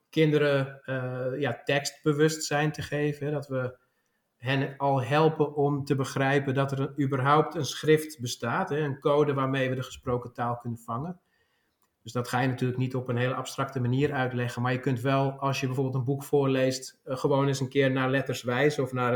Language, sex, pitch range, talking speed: Dutch, male, 125-145 Hz, 190 wpm